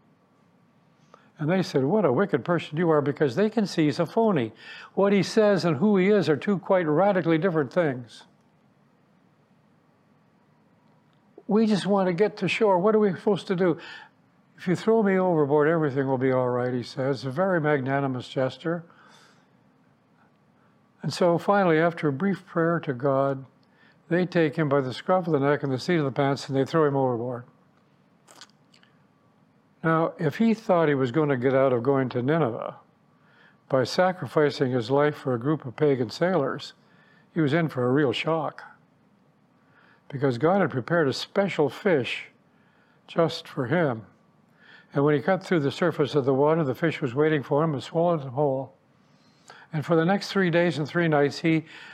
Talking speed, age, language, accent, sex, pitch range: 185 wpm, 60-79, English, American, male, 140-180 Hz